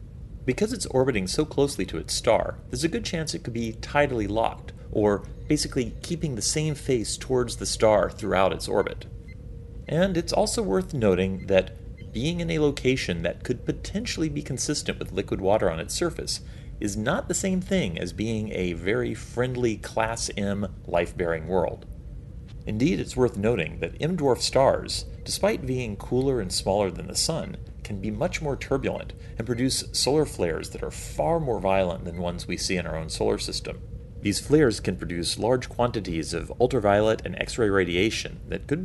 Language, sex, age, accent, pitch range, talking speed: English, male, 40-59, American, 95-140 Hz, 180 wpm